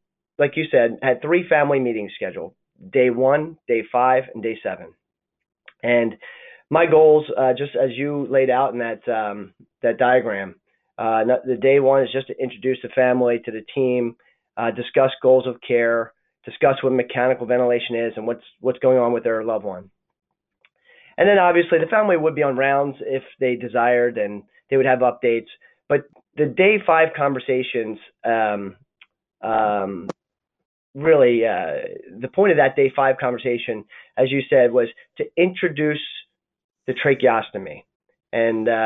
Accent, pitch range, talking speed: American, 120-140 Hz, 160 wpm